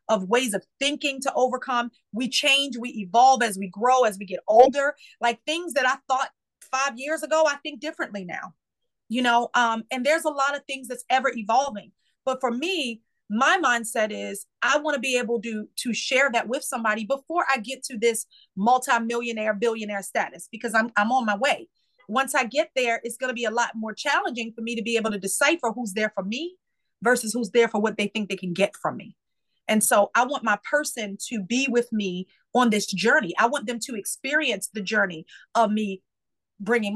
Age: 30-49